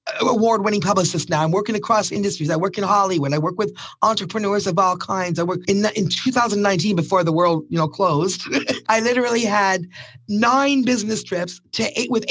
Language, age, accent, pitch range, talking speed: English, 30-49, American, 185-235 Hz, 185 wpm